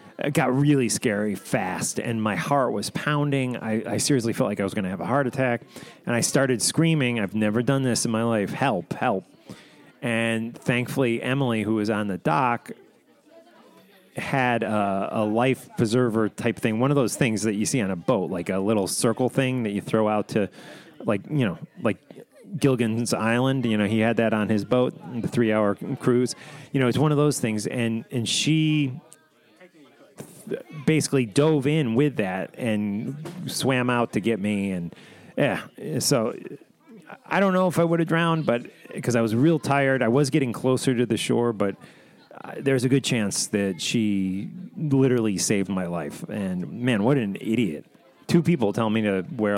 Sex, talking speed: male, 190 wpm